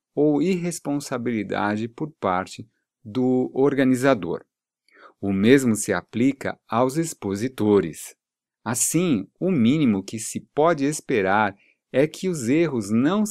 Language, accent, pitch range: Portuguese, Brazilian, 110-165 Hz